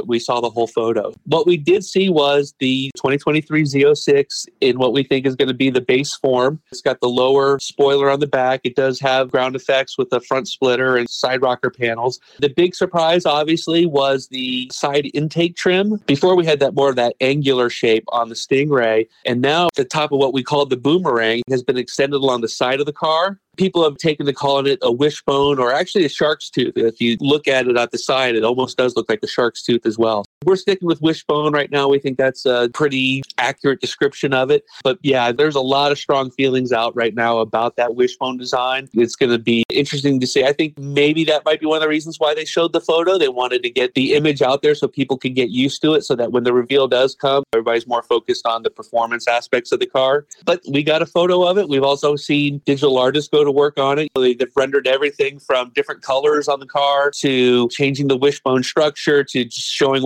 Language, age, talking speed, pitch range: English, 40-59, 235 wpm, 125-150 Hz